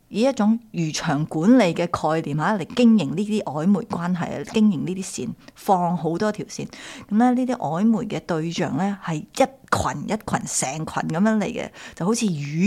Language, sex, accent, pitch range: Chinese, female, native, 165-235 Hz